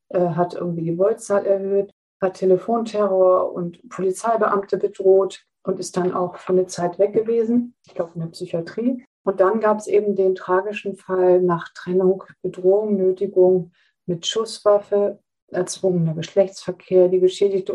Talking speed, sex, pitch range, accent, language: 140 wpm, female, 185-210 Hz, German, German